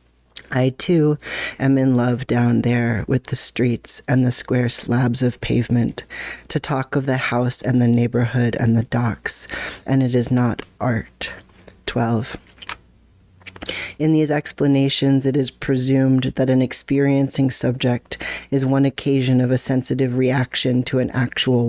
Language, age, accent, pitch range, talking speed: English, 40-59, American, 120-135 Hz, 145 wpm